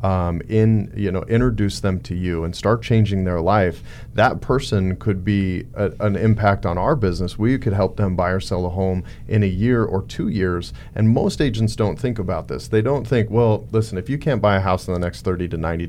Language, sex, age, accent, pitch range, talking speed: English, male, 40-59, American, 90-110 Hz, 235 wpm